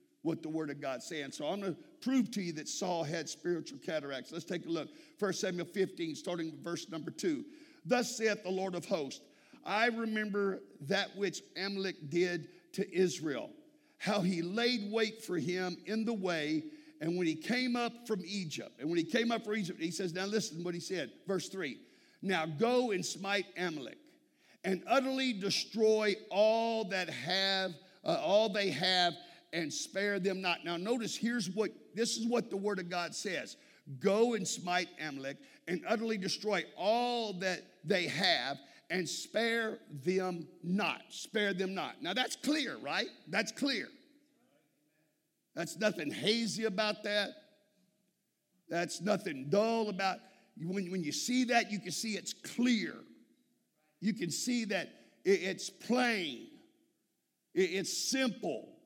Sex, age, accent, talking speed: male, 50-69, American, 160 wpm